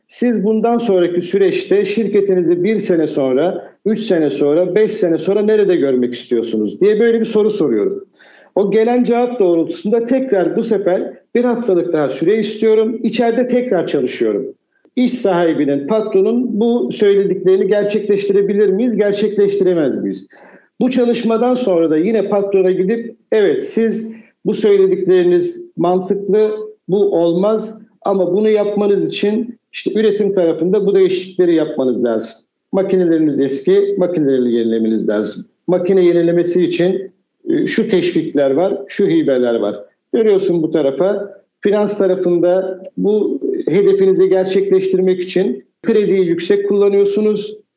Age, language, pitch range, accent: 50-69, Turkish, 180-220 Hz, native